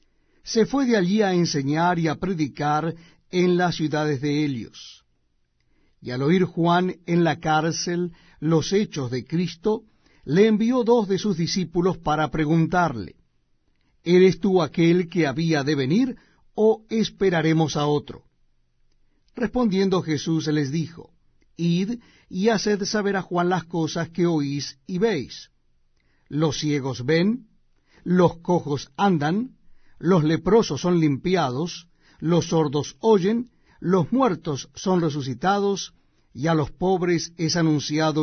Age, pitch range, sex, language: 60-79, 145-190 Hz, male, Spanish